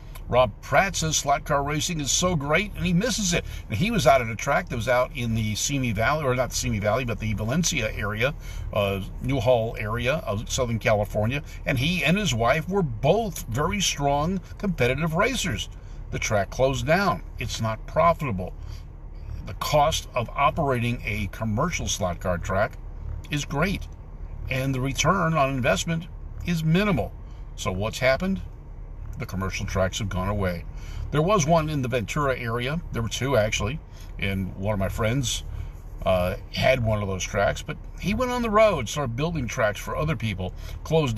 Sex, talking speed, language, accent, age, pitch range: male, 180 wpm, English, American, 60-79, 100-150 Hz